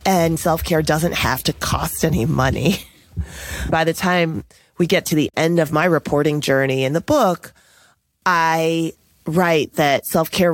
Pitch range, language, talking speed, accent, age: 130-160 Hz, English, 155 wpm, American, 30-49